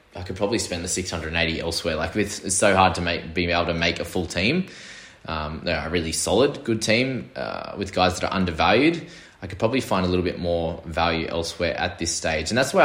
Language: English